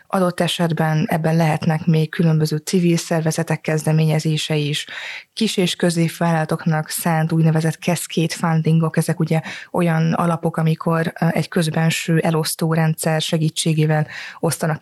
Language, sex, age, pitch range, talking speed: Hungarian, female, 20-39, 160-195 Hz, 110 wpm